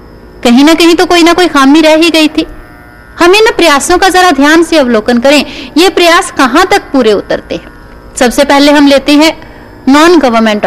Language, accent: Hindi, native